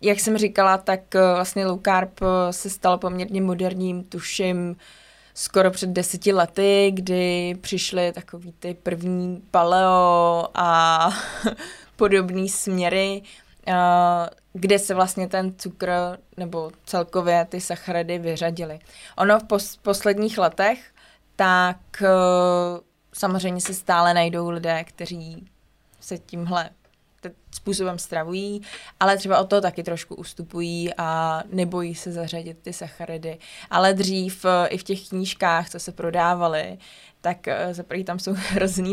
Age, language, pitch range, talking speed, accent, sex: 20-39, Czech, 175-190 Hz, 120 wpm, native, female